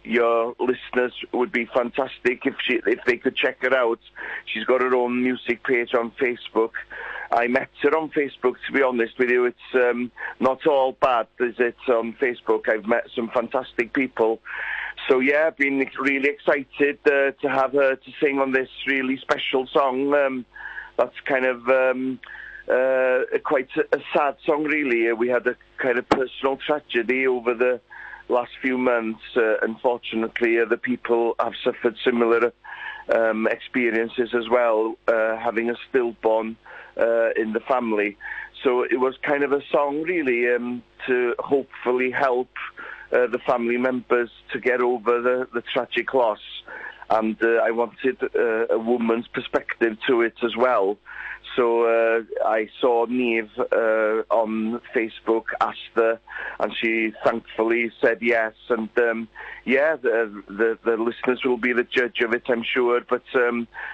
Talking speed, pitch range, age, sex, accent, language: 160 wpm, 115-135 Hz, 50-69, male, British, English